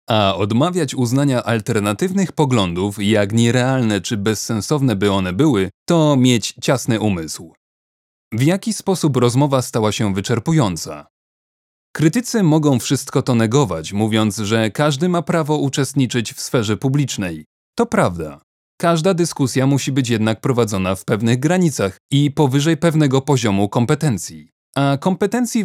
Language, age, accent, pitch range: Polish, 30-49, native, 110-155 Hz